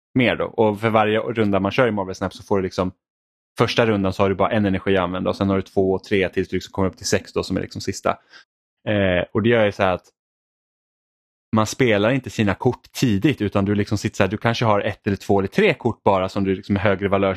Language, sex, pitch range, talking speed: Swedish, male, 95-115 Hz, 275 wpm